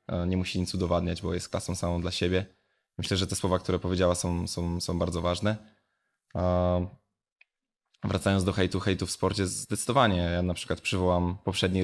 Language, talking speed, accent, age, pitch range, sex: Polish, 170 wpm, native, 20-39, 90-100 Hz, male